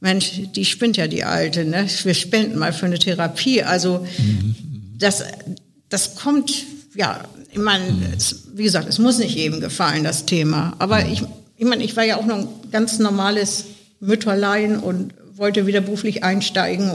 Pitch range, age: 175-210 Hz, 60-79